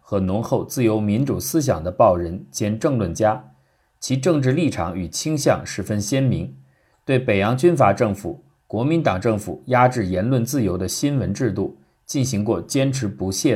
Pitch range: 100-135 Hz